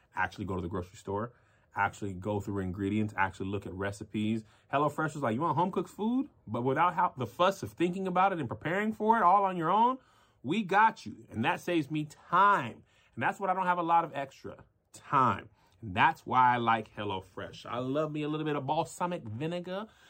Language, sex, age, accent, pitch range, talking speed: English, male, 30-49, American, 105-175 Hz, 210 wpm